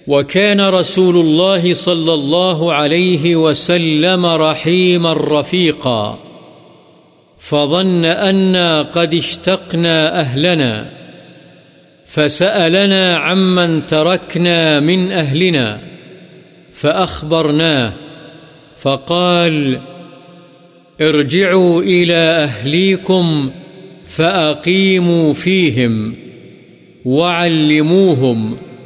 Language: Urdu